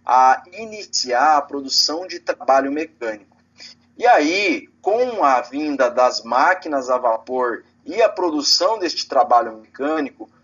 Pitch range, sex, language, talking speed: 145-215 Hz, male, Portuguese, 125 wpm